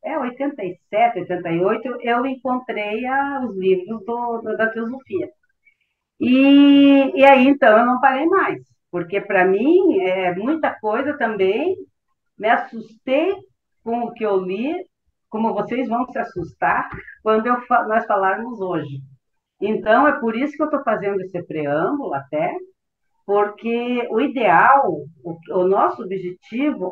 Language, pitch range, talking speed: Portuguese, 180-280 Hz, 130 wpm